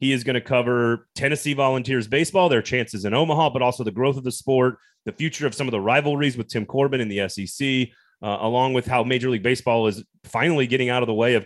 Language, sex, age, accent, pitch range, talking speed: English, male, 30-49, American, 110-135 Hz, 245 wpm